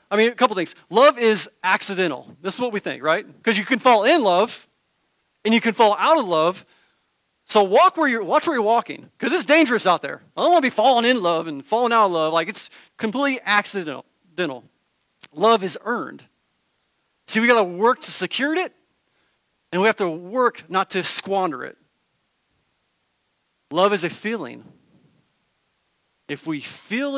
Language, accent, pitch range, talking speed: English, American, 170-250 Hz, 185 wpm